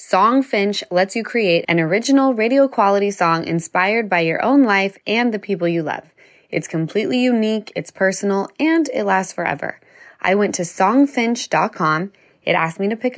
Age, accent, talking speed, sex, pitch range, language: 20-39, American, 175 wpm, female, 180-250 Hz, English